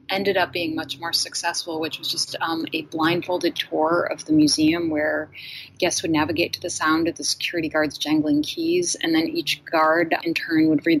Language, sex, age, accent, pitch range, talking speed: English, female, 30-49, American, 155-215 Hz, 200 wpm